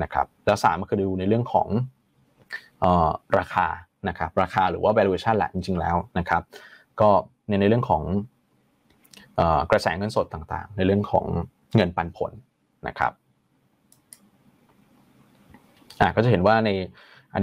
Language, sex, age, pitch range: Thai, male, 20-39, 95-115 Hz